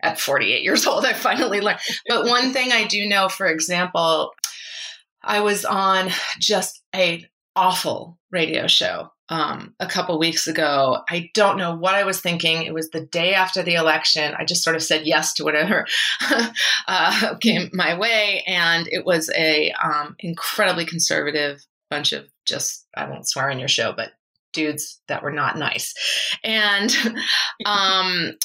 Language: English